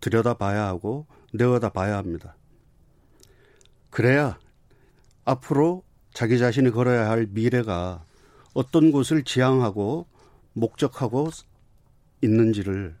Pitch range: 105-130 Hz